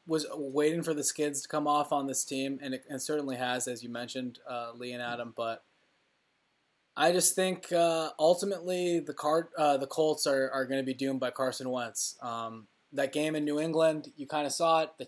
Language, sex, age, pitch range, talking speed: English, male, 20-39, 125-150 Hz, 220 wpm